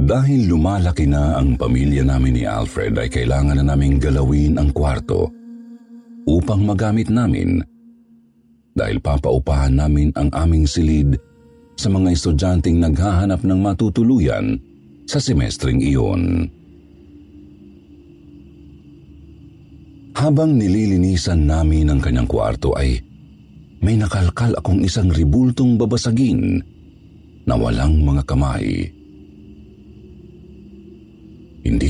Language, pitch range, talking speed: Filipino, 70-105 Hz, 95 wpm